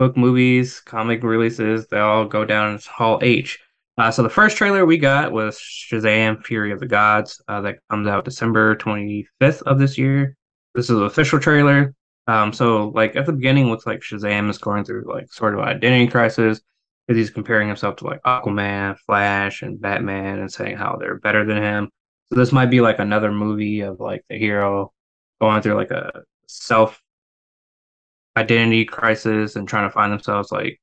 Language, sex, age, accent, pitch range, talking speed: English, male, 10-29, American, 105-125 Hz, 190 wpm